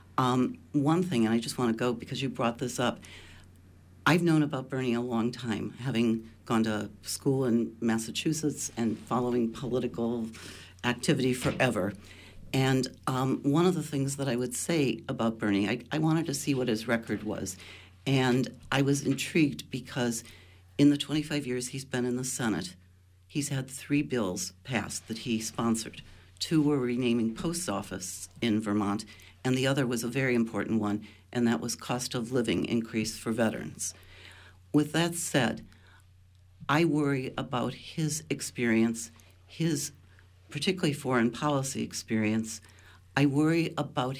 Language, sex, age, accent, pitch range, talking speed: English, female, 60-79, American, 100-135 Hz, 155 wpm